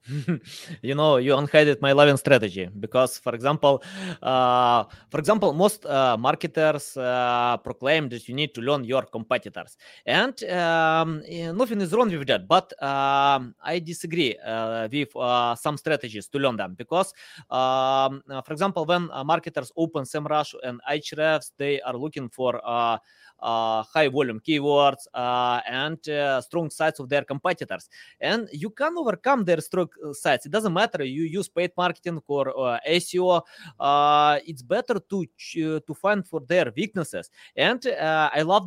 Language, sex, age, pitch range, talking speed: English, male, 20-39, 135-180 Hz, 160 wpm